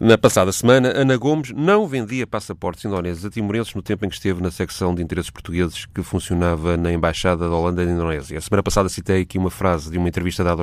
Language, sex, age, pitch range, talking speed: Portuguese, male, 30-49, 90-115 Hz, 225 wpm